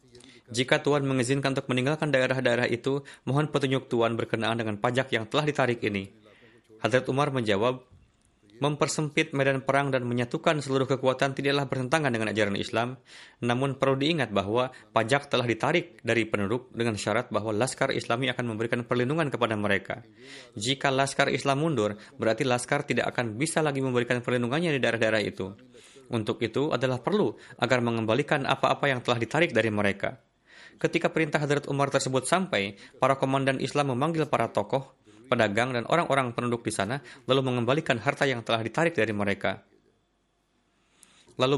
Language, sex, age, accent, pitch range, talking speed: Indonesian, male, 20-39, native, 115-140 Hz, 150 wpm